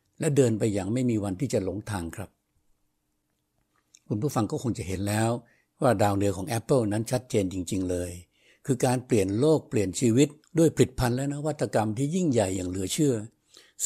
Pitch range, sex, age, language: 105-135 Hz, male, 60-79, Thai